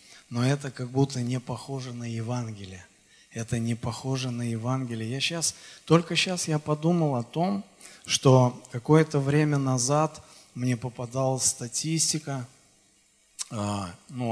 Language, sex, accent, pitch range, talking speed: Russian, male, native, 110-145 Hz, 120 wpm